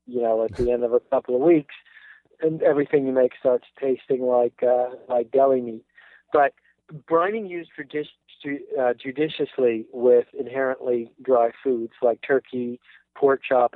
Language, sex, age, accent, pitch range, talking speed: English, male, 40-59, American, 120-155 Hz, 155 wpm